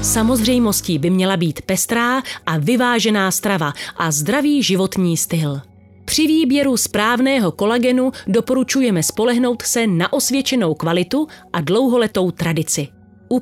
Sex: female